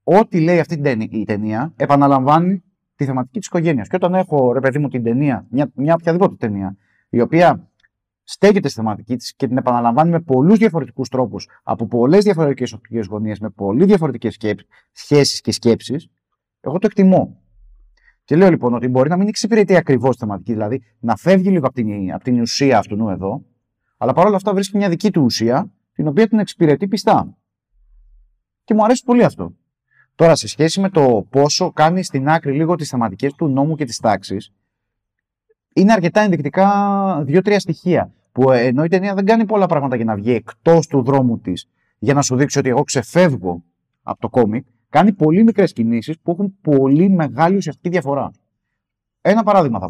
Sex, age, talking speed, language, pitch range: male, 30-49, 180 wpm, Greek, 115-180 Hz